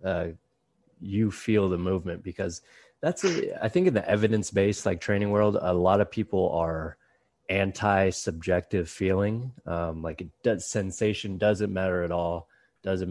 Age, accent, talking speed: 20-39, American, 135 wpm